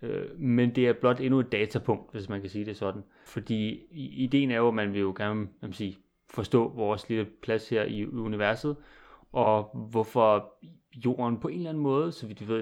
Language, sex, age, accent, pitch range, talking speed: Danish, male, 30-49, native, 105-125 Hz, 200 wpm